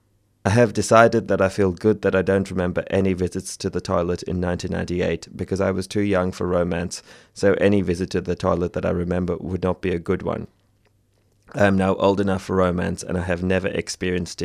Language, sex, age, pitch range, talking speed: English, male, 30-49, 90-105 Hz, 215 wpm